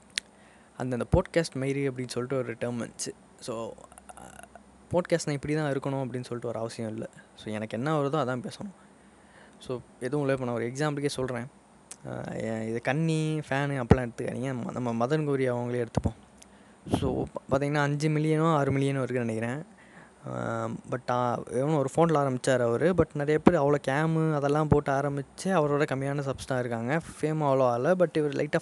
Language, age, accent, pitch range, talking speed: Tamil, 20-39, native, 120-150 Hz, 155 wpm